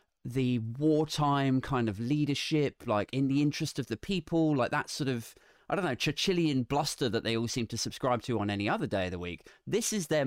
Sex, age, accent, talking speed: male, 30-49, British, 220 wpm